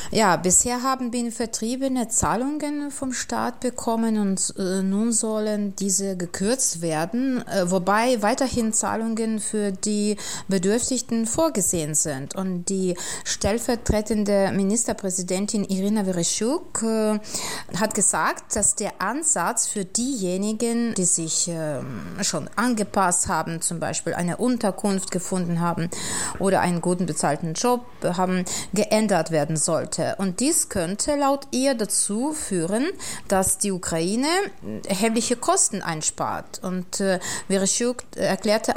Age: 30-49